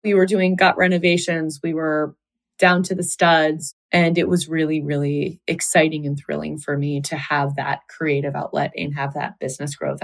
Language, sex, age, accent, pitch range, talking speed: English, female, 20-39, American, 145-185 Hz, 185 wpm